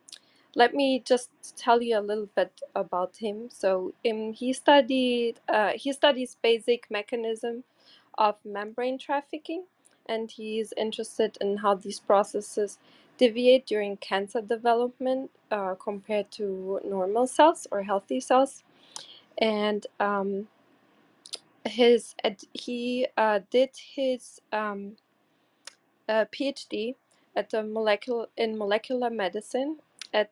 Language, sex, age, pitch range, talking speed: English, female, 20-39, 210-260 Hz, 120 wpm